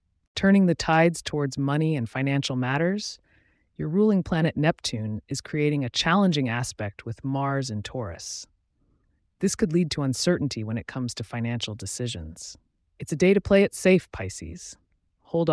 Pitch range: 115-160 Hz